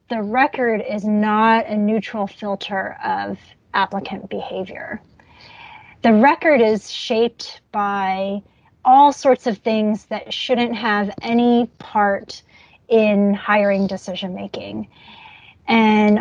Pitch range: 210-250 Hz